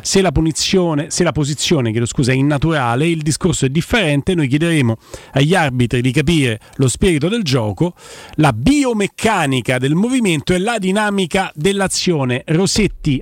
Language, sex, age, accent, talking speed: Italian, male, 40-59, native, 145 wpm